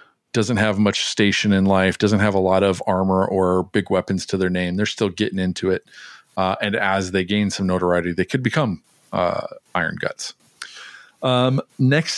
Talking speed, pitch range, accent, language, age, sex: 185 wpm, 95-110 Hz, American, English, 40-59, male